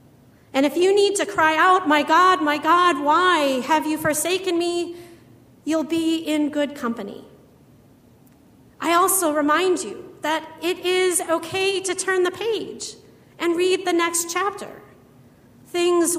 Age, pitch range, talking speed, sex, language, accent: 40-59, 245-325 Hz, 145 wpm, female, English, American